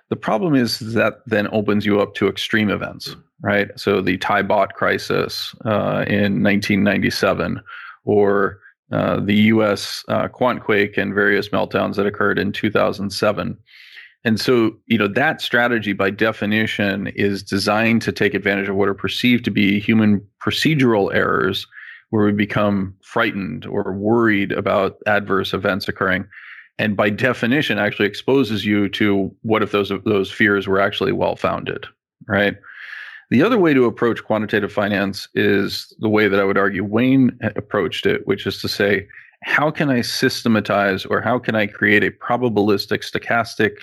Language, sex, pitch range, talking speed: English, male, 100-115 Hz, 155 wpm